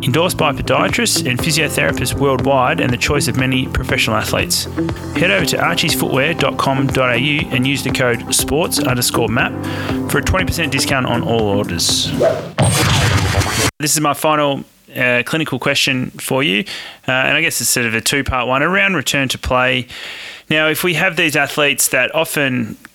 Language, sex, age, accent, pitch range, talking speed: English, male, 30-49, Australian, 120-135 Hz, 160 wpm